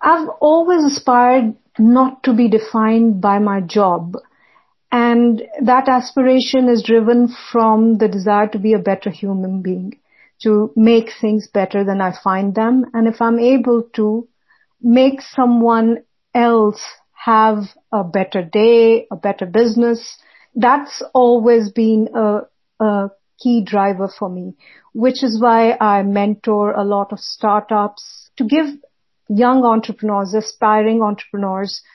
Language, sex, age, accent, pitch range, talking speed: English, female, 50-69, Indian, 205-235 Hz, 135 wpm